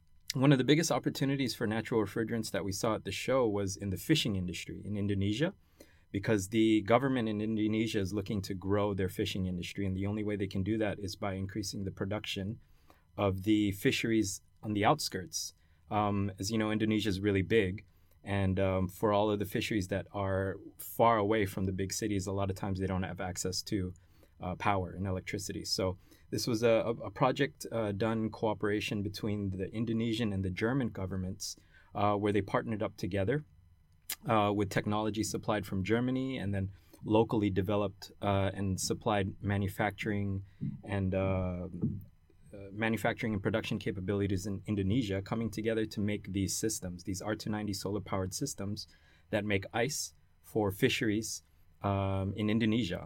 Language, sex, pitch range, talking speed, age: English, male, 95-110 Hz, 175 wpm, 30-49